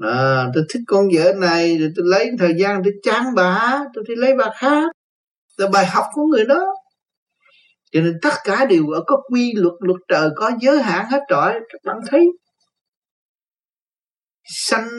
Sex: male